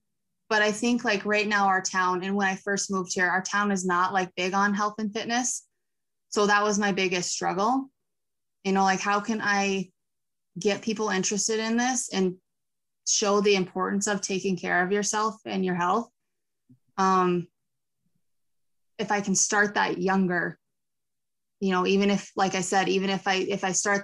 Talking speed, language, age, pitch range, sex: 180 wpm, English, 20-39, 185-210 Hz, female